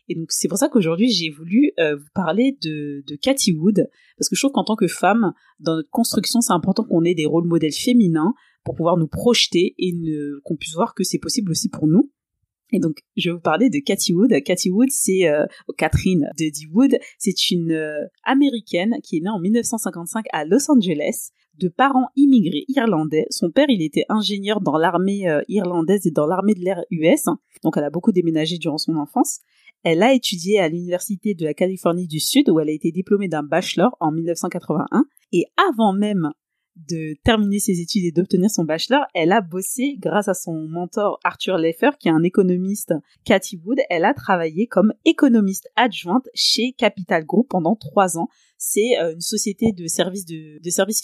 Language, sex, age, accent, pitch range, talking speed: French, female, 30-49, French, 165-220 Hz, 200 wpm